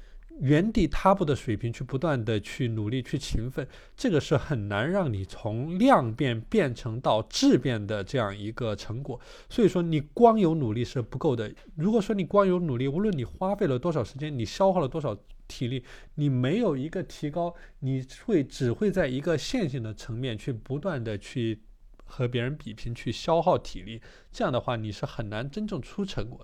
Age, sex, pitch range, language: 20-39, male, 120-190 Hz, Chinese